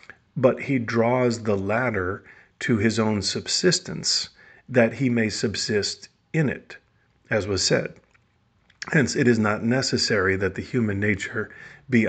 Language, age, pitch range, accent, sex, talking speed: English, 40-59, 100-120 Hz, American, male, 140 wpm